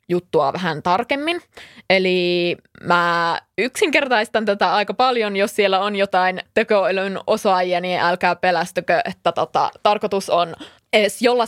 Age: 20-39